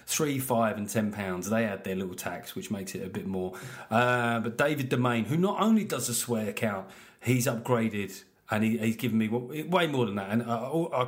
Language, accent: English, British